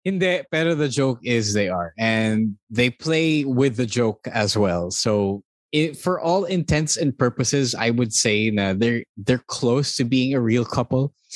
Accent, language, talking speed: Filipino, English, 185 wpm